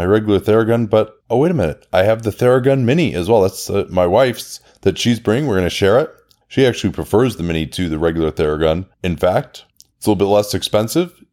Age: 30-49